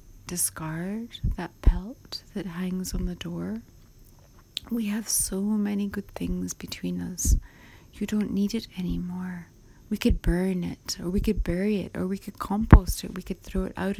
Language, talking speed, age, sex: English, 170 wpm, 30-49, female